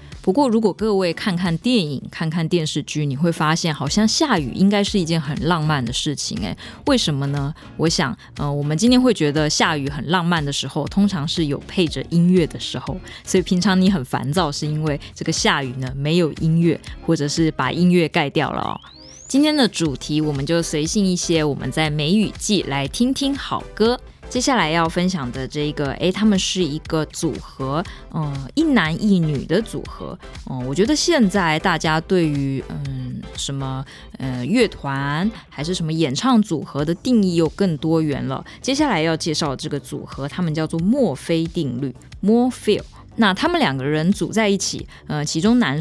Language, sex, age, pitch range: Chinese, female, 20-39, 145-195 Hz